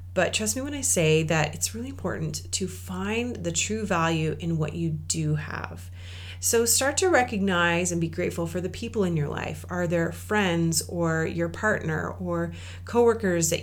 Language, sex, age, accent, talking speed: English, female, 30-49, American, 185 wpm